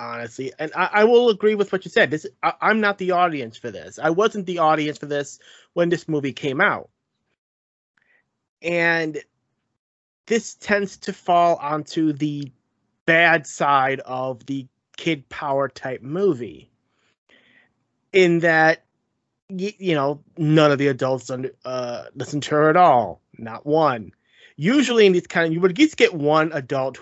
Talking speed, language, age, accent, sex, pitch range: 160 wpm, English, 30-49, American, male, 135-185 Hz